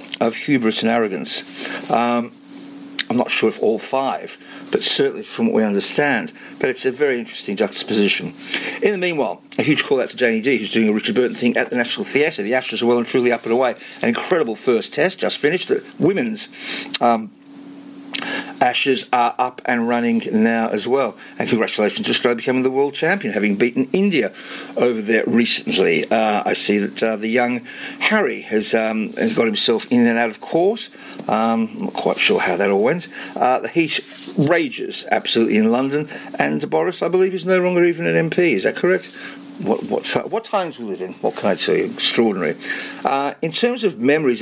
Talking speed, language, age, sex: 195 wpm, English, 50-69, male